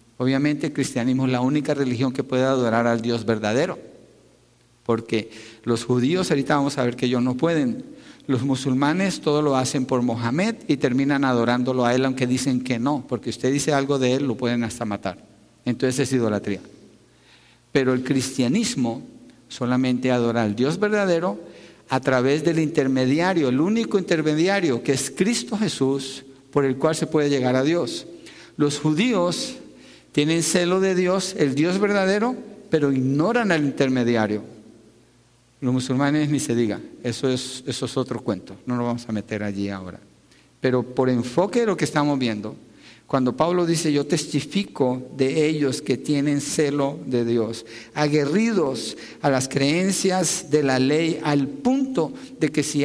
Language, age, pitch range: Spanish, 50-69, 125-160 Hz